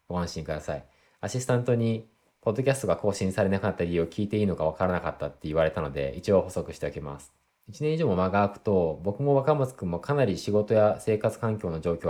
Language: Japanese